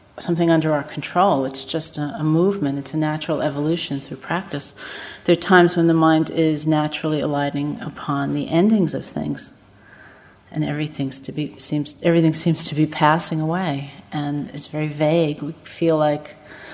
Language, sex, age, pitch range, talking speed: English, female, 40-59, 145-165 Hz, 170 wpm